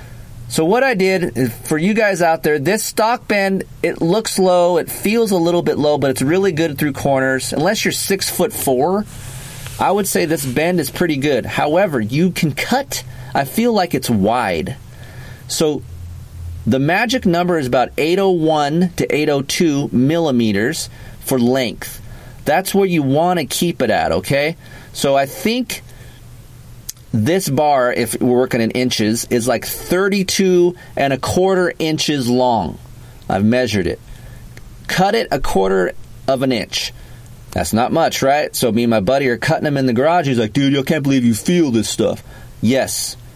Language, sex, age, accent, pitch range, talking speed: English, male, 40-59, American, 120-170 Hz, 170 wpm